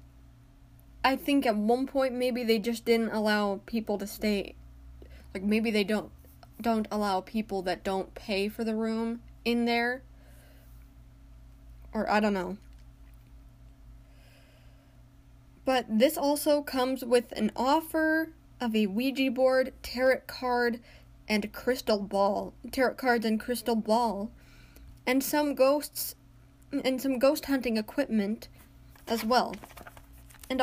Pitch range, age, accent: 195-250 Hz, 10-29, American